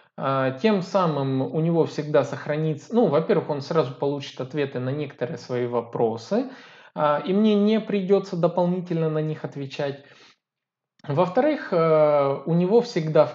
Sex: male